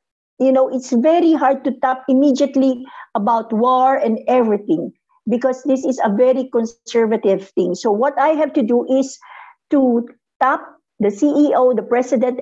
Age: 50-69